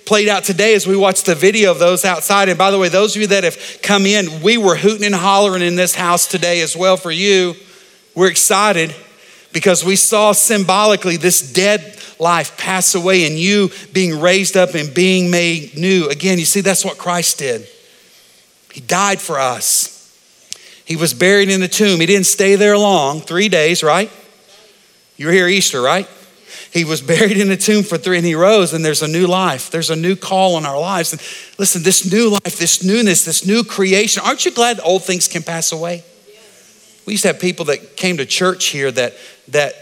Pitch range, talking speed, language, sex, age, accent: 170-200 Hz, 210 wpm, English, male, 40-59, American